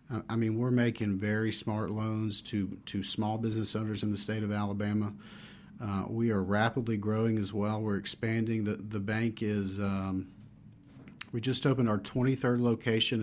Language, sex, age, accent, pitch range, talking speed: English, male, 40-59, American, 105-120 Hz, 170 wpm